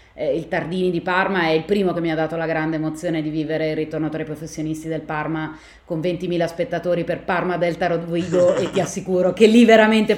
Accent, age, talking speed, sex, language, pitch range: native, 30-49, 210 wpm, female, Italian, 165-205 Hz